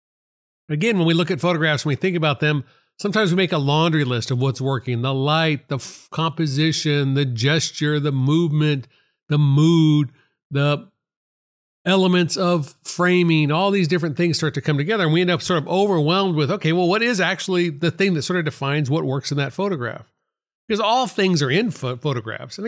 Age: 50-69